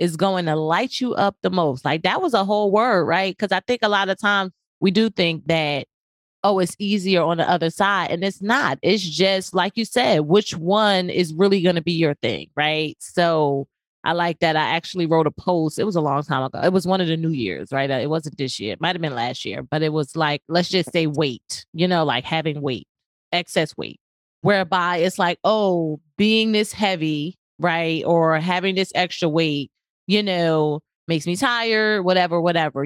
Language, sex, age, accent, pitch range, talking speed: English, female, 30-49, American, 155-195 Hz, 215 wpm